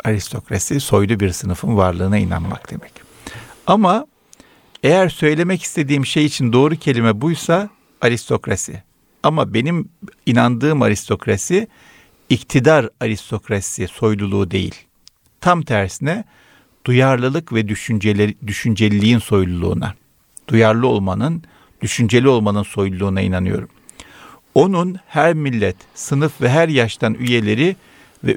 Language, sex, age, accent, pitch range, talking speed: Turkish, male, 50-69, native, 100-145 Hz, 100 wpm